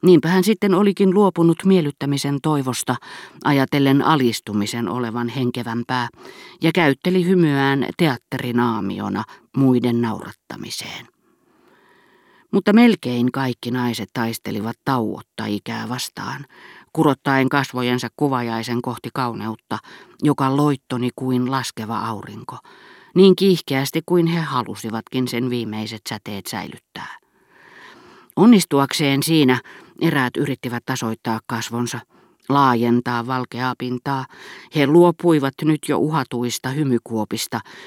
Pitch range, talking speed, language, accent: 120-160 Hz, 95 wpm, Finnish, native